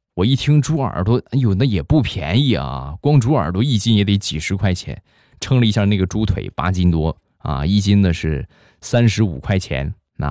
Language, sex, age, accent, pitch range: Chinese, male, 20-39, native, 90-130 Hz